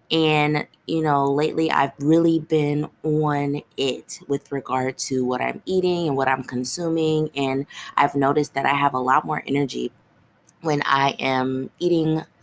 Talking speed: 160 wpm